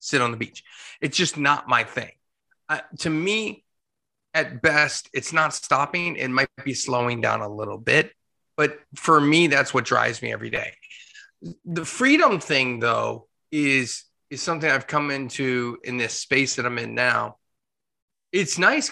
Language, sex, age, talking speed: English, male, 30-49, 170 wpm